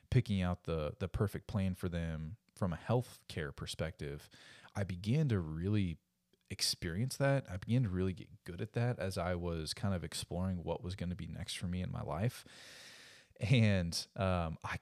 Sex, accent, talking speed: male, American, 185 wpm